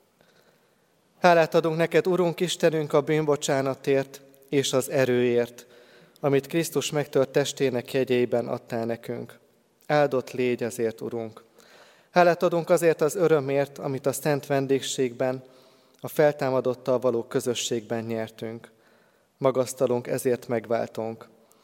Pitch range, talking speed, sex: 115-140 Hz, 105 wpm, male